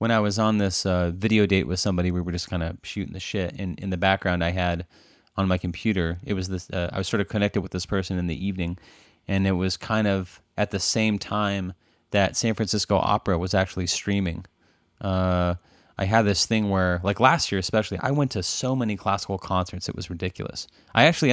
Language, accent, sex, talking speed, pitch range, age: English, American, male, 225 wpm, 90-105 Hz, 30-49